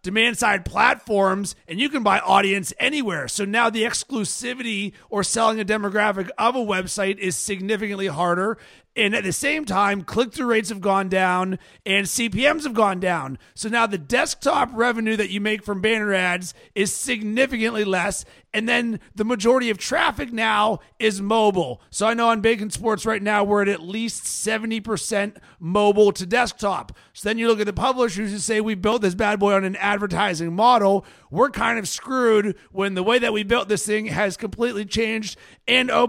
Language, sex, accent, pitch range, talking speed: English, male, American, 200-230 Hz, 190 wpm